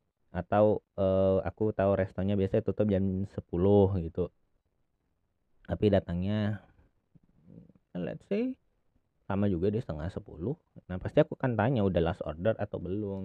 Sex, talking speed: male, 130 wpm